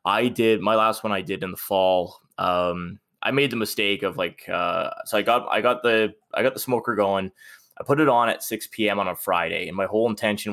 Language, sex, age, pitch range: English, male, 20-39, 100-120 Hz